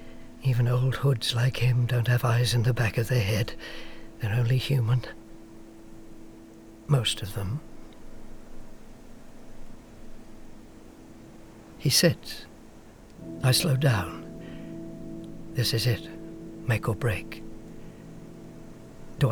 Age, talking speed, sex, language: 60-79, 100 wpm, male, English